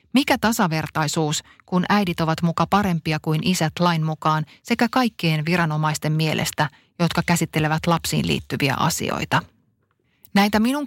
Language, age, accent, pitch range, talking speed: Finnish, 30-49, native, 160-195 Hz, 120 wpm